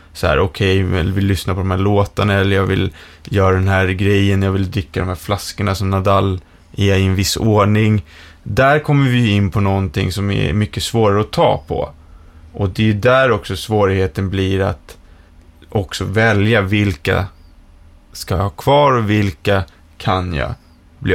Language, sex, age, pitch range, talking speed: English, male, 20-39, 90-105 Hz, 180 wpm